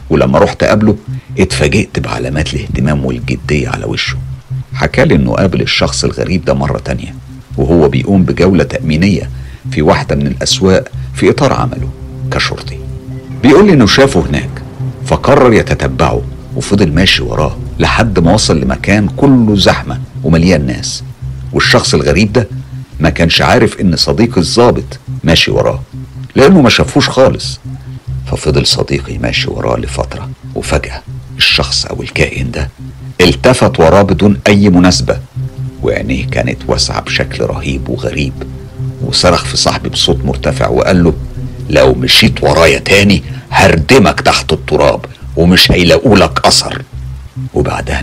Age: 50-69